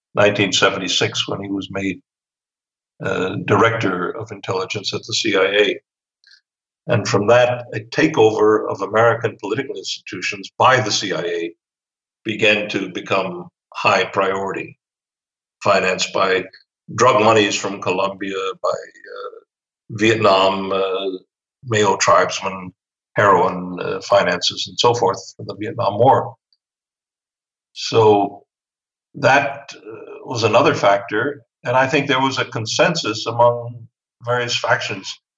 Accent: American